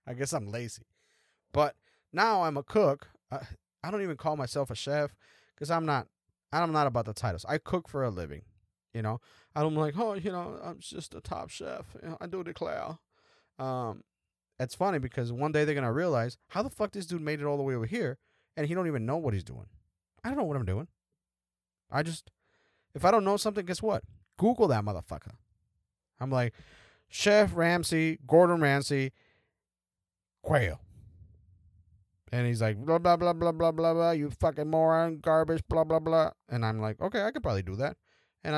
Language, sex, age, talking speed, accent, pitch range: English, male, 30-49, 200 wpm, American, 100-155 Hz